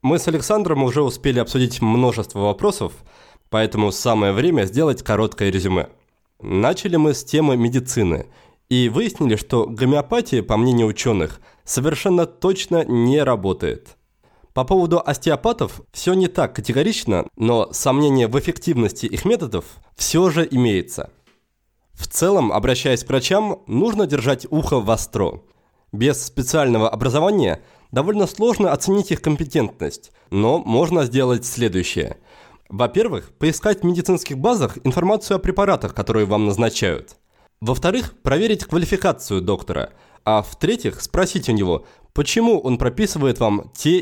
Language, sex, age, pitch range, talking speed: Russian, male, 20-39, 115-170 Hz, 130 wpm